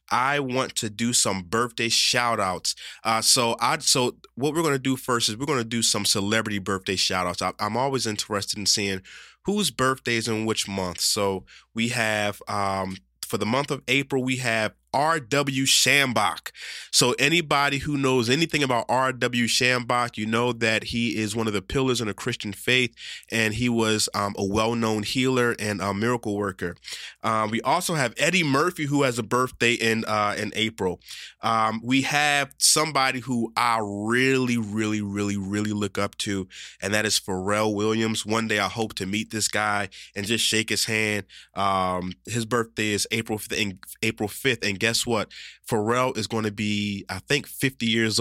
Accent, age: American, 20-39